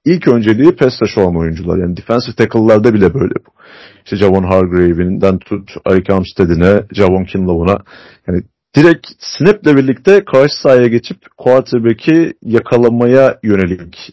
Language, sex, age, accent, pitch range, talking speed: Turkish, male, 40-59, native, 100-135 Hz, 125 wpm